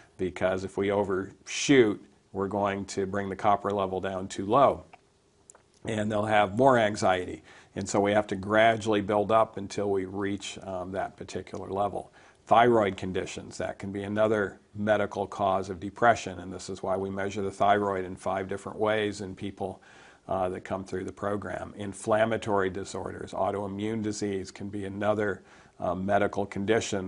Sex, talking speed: male, 165 wpm